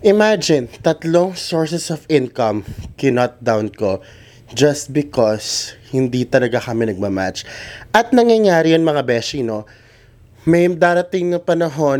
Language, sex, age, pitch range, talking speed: Filipino, male, 20-39, 115-155 Hz, 120 wpm